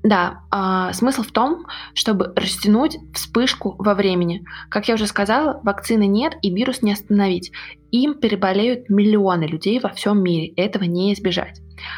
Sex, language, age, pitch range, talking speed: female, Russian, 20-39, 180-210 Hz, 145 wpm